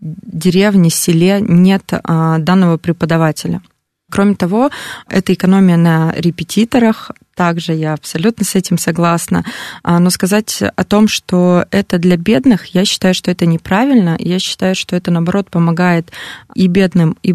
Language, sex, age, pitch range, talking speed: Russian, female, 20-39, 165-190 Hz, 140 wpm